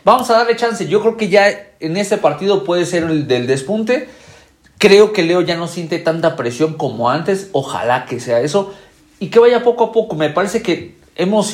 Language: Spanish